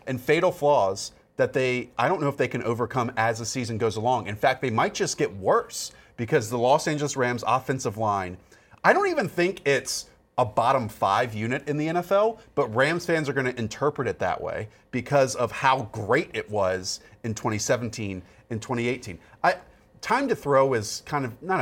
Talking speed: 195 wpm